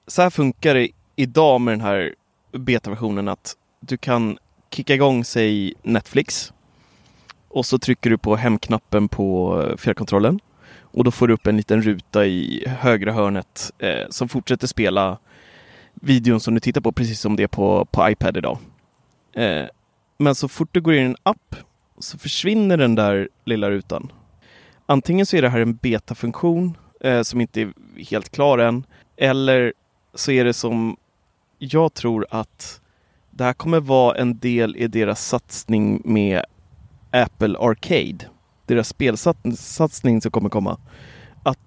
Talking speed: 155 wpm